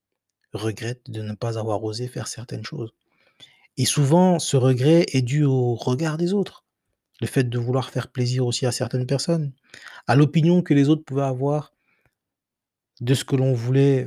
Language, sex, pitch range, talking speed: French, male, 120-145 Hz, 175 wpm